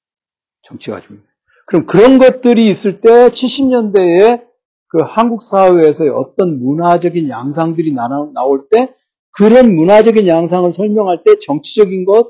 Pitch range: 160-235 Hz